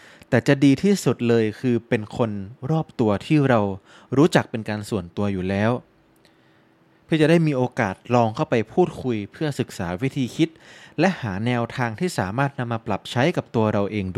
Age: 20-39